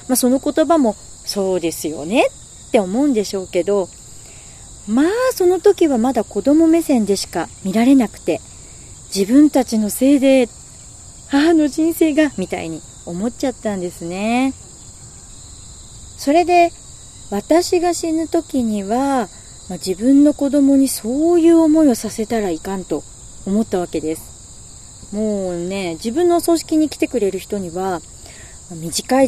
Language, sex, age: Japanese, female, 40-59